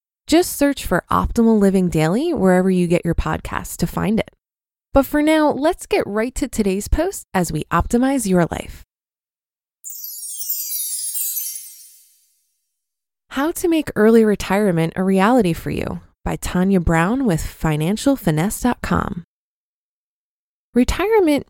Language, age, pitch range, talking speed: English, 20-39, 175-255 Hz, 120 wpm